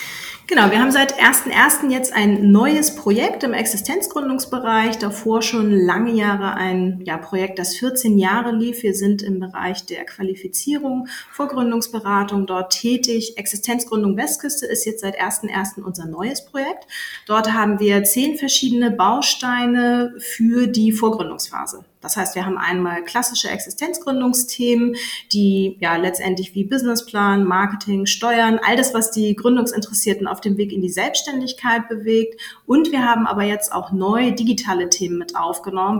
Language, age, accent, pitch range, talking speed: German, 30-49, German, 190-235 Hz, 145 wpm